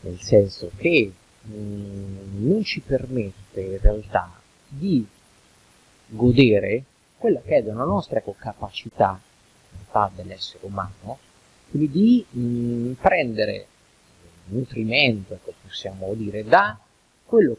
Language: Italian